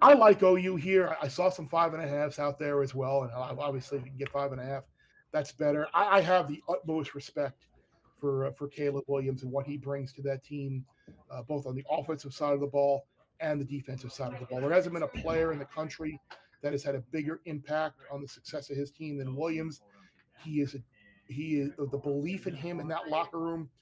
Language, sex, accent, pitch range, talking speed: English, male, American, 140-155 Hz, 240 wpm